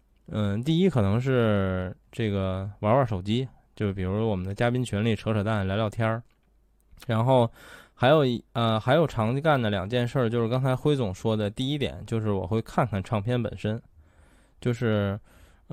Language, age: Chinese, 20-39